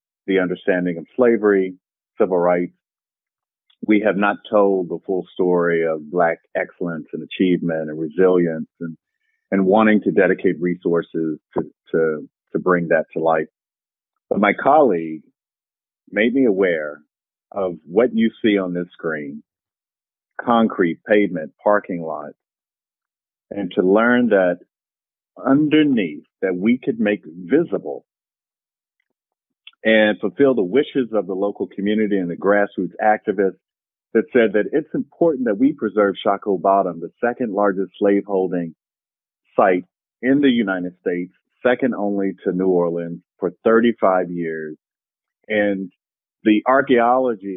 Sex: male